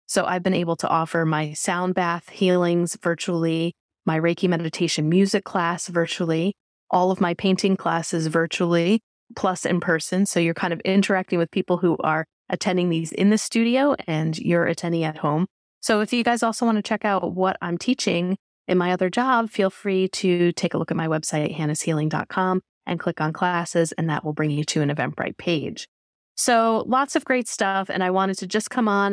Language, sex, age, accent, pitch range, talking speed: English, female, 30-49, American, 170-210 Hz, 200 wpm